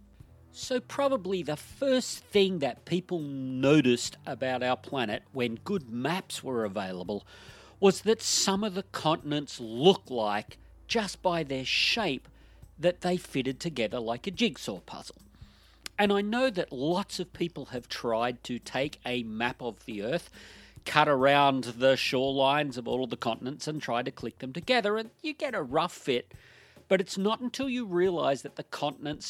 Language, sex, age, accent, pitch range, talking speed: English, male, 40-59, Australian, 125-180 Hz, 165 wpm